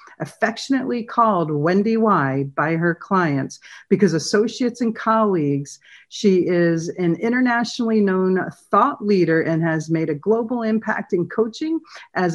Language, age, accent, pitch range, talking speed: English, 50-69, American, 170-230 Hz, 130 wpm